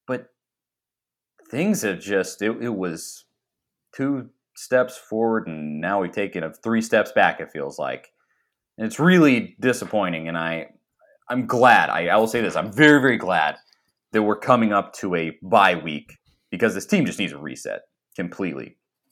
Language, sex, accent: English, male, American